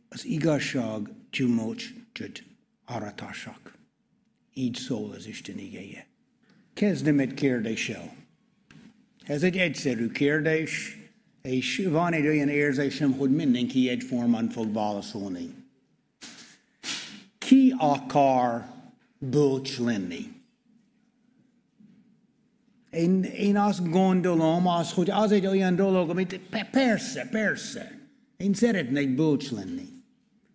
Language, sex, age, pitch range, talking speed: Hungarian, male, 60-79, 145-230 Hz, 90 wpm